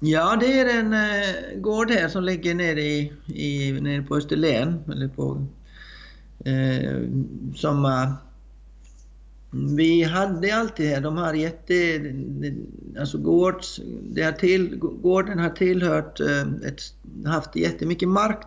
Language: Swedish